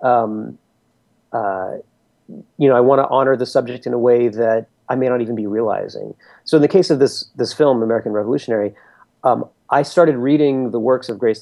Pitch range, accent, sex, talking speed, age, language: 100-130 Hz, American, male, 200 wpm, 30-49, English